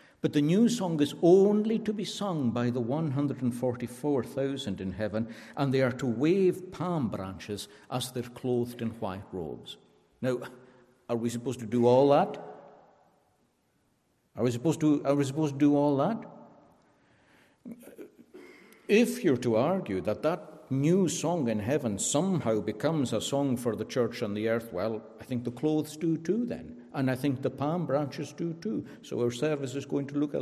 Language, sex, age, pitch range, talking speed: English, male, 60-79, 120-165 Hz, 180 wpm